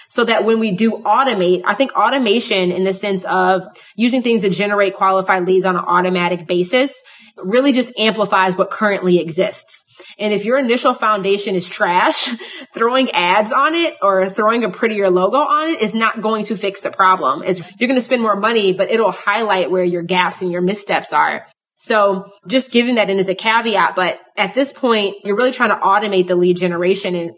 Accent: American